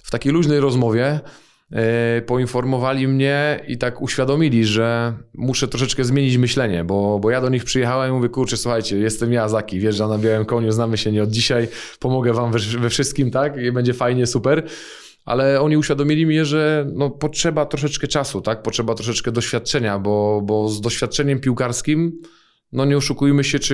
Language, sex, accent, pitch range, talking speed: Polish, male, native, 115-145 Hz, 175 wpm